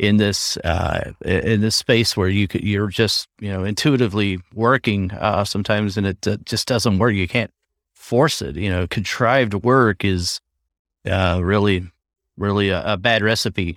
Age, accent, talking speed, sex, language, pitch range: 40-59, American, 170 wpm, male, English, 95-125 Hz